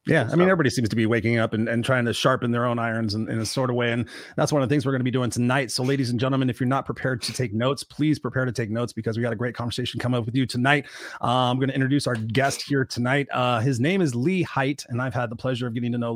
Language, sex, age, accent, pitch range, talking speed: English, male, 30-49, American, 120-135 Hz, 320 wpm